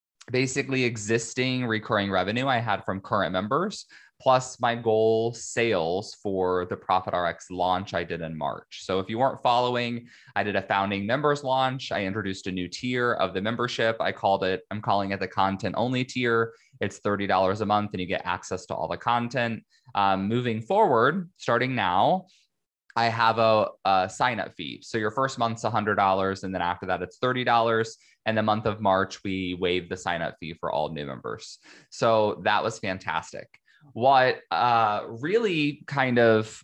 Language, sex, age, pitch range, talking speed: English, male, 20-39, 95-125 Hz, 175 wpm